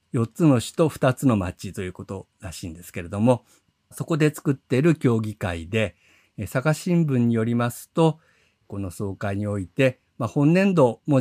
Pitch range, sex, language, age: 100-135 Hz, male, Japanese, 50-69